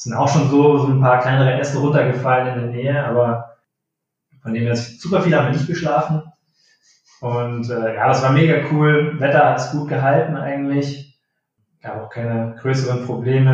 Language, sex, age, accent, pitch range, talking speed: German, male, 20-39, German, 125-150 Hz, 180 wpm